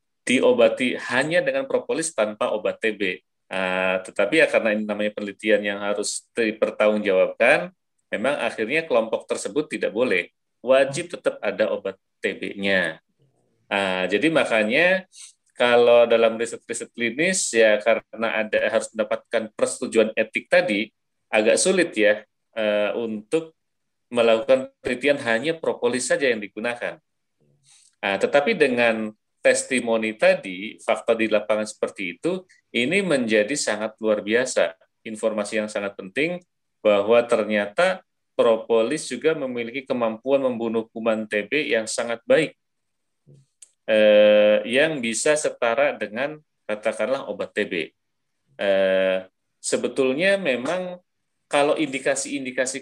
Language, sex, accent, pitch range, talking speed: Indonesian, male, native, 105-145 Hz, 115 wpm